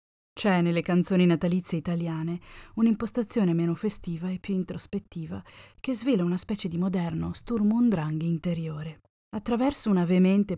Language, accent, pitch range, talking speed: Italian, native, 175-205 Hz, 125 wpm